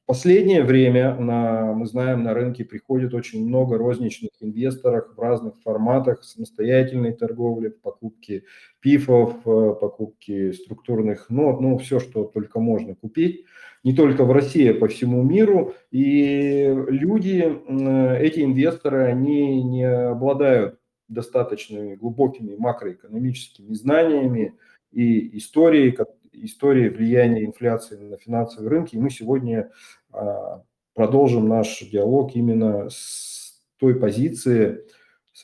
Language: Russian